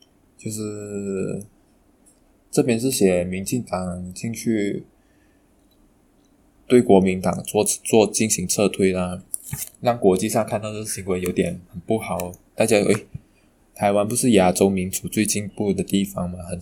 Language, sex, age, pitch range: Chinese, male, 20-39, 95-110 Hz